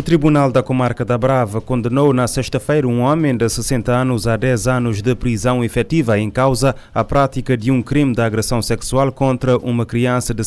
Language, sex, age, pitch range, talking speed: Portuguese, male, 30-49, 110-125 Hz, 195 wpm